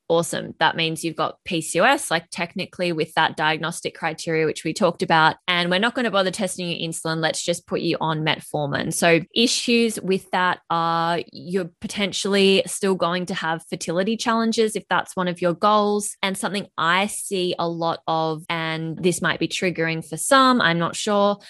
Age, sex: 20-39, female